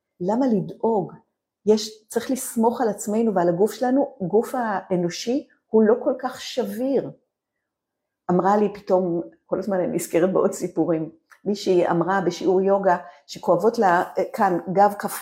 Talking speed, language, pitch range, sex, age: 140 wpm, Hebrew, 175-225 Hz, female, 50-69